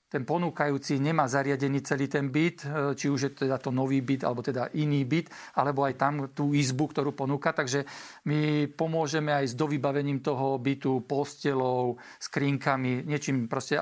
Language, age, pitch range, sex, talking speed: Slovak, 50-69, 140-155 Hz, male, 165 wpm